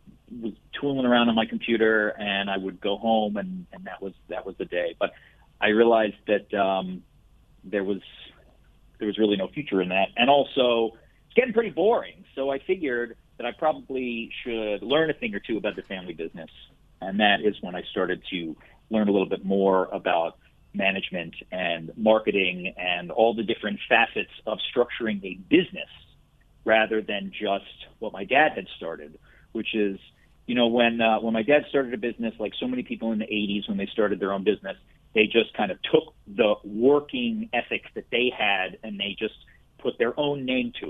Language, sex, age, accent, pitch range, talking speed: English, male, 40-59, American, 105-135 Hz, 195 wpm